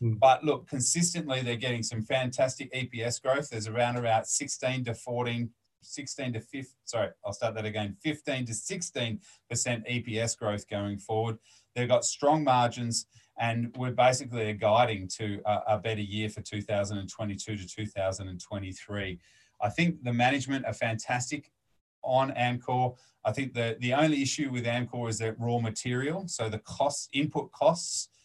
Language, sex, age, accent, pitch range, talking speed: English, male, 30-49, Australian, 110-125 Hz, 155 wpm